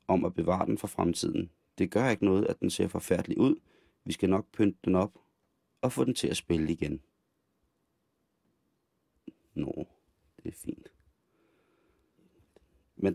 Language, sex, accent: Danish, male, native